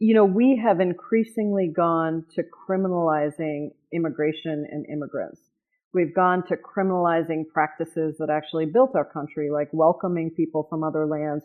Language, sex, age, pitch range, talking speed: English, female, 40-59, 165-220 Hz, 140 wpm